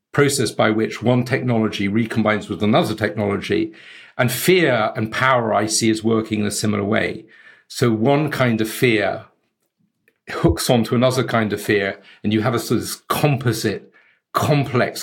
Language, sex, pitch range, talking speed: English, male, 105-120 Hz, 165 wpm